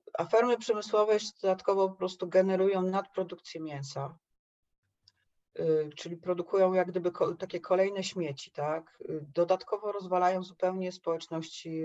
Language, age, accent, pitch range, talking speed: Polish, 40-59, native, 150-180 Hz, 105 wpm